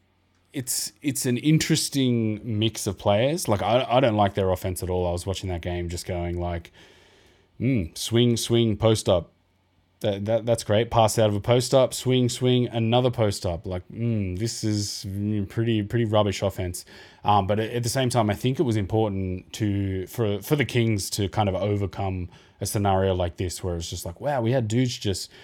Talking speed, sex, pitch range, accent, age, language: 205 wpm, male, 95-115 Hz, Australian, 20-39, English